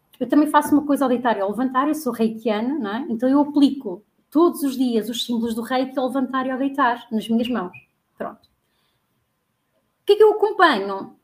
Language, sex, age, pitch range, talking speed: Portuguese, female, 20-39, 230-295 Hz, 215 wpm